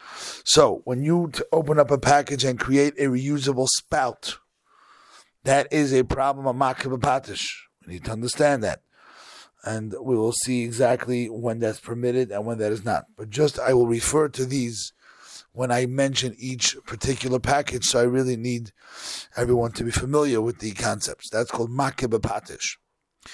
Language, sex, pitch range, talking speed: English, male, 105-130 Hz, 160 wpm